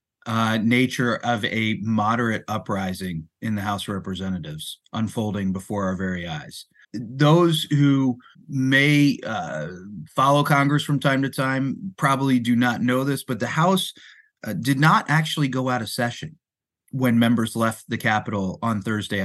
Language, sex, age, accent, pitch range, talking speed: English, male, 30-49, American, 110-140 Hz, 155 wpm